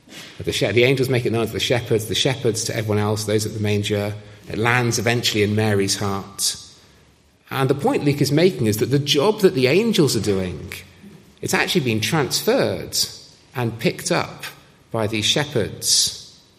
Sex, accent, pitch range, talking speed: male, British, 100-135 Hz, 175 wpm